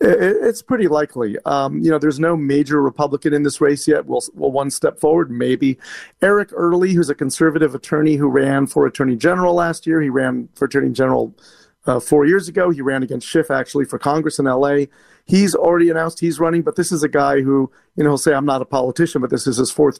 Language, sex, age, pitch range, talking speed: English, male, 40-59, 135-160 Hz, 230 wpm